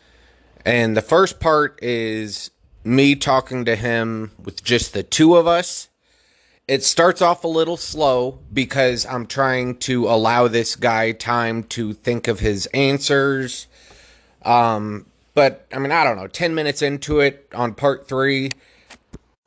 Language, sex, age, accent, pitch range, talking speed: English, male, 30-49, American, 115-140 Hz, 150 wpm